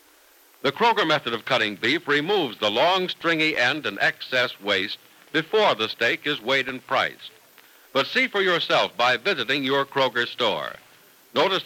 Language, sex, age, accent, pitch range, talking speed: English, male, 60-79, American, 130-190 Hz, 160 wpm